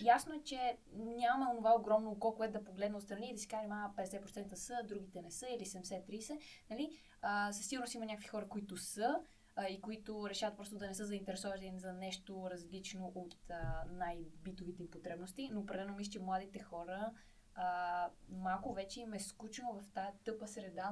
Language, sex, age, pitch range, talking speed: Bulgarian, female, 20-39, 185-220 Hz, 185 wpm